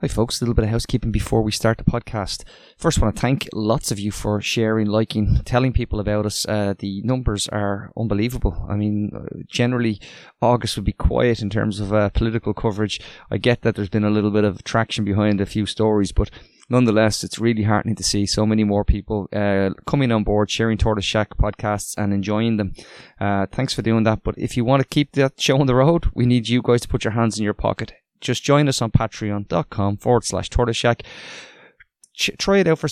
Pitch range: 105-125 Hz